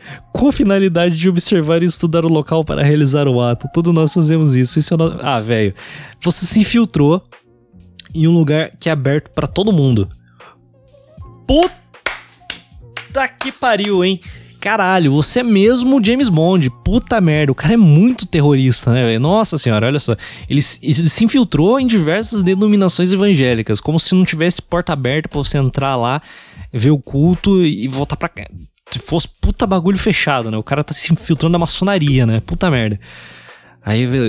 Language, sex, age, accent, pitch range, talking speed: Portuguese, male, 20-39, Brazilian, 120-170 Hz, 170 wpm